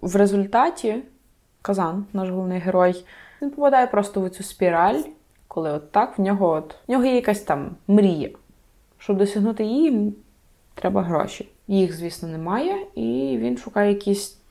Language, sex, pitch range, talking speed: Ukrainian, female, 185-225 Hz, 150 wpm